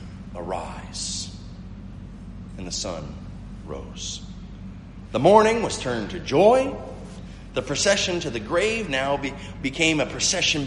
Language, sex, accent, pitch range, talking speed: English, male, American, 95-145 Hz, 110 wpm